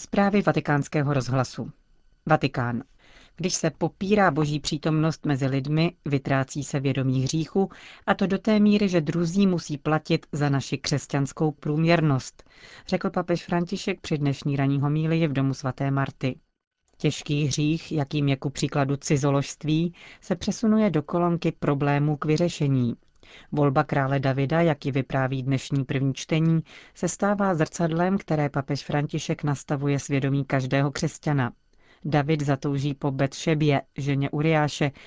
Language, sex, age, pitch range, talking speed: Czech, female, 40-59, 140-165 Hz, 130 wpm